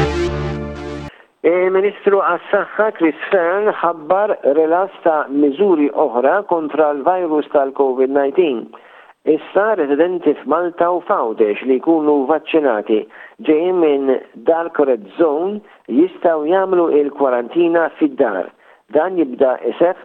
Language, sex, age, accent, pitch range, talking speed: English, male, 50-69, Italian, 140-180 Hz, 100 wpm